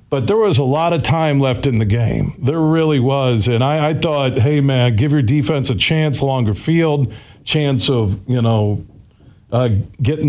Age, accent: 50-69, American